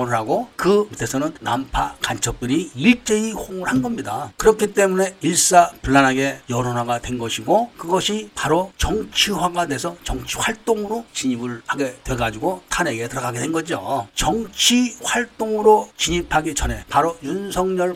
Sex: male